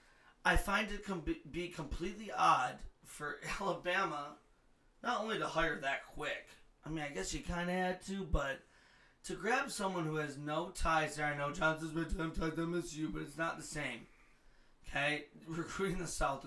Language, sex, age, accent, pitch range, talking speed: English, male, 30-49, American, 145-175 Hz, 175 wpm